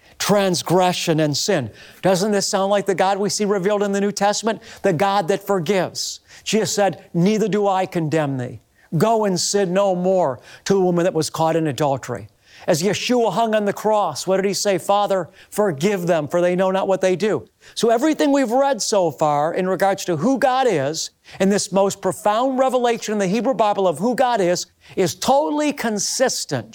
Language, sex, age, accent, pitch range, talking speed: English, male, 50-69, American, 175-215 Hz, 195 wpm